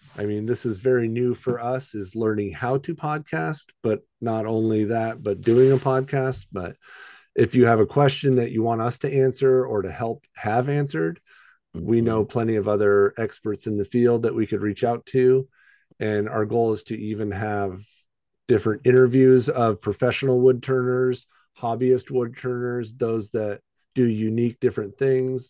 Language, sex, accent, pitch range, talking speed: English, male, American, 105-125 Hz, 170 wpm